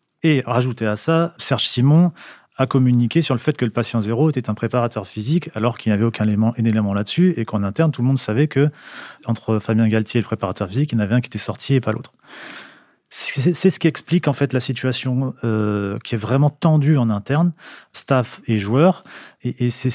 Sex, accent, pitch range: male, French, 110-140 Hz